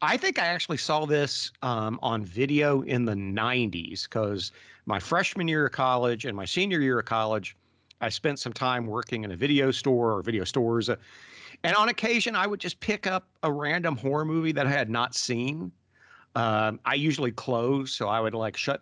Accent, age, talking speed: American, 50-69, 200 wpm